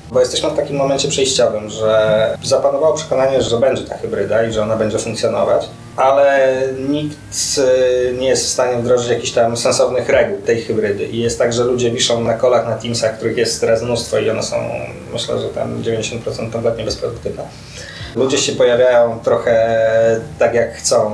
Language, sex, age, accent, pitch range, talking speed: Polish, male, 20-39, native, 110-135 Hz, 175 wpm